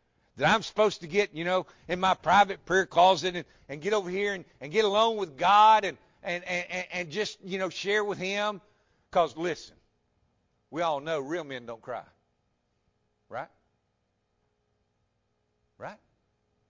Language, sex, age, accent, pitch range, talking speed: English, male, 50-69, American, 105-175 Hz, 150 wpm